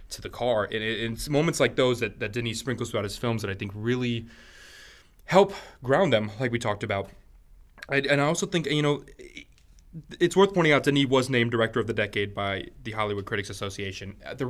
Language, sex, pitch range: English, male, 110-140 Hz